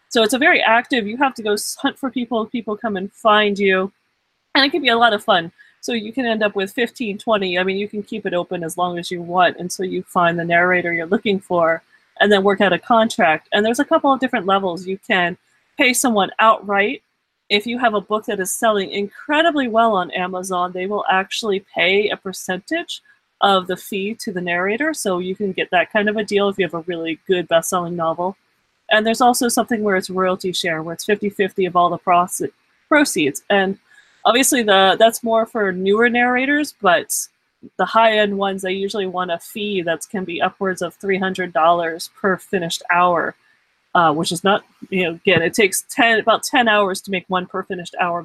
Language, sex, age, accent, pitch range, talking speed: English, female, 30-49, American, 180-225 Hz, 215 wpm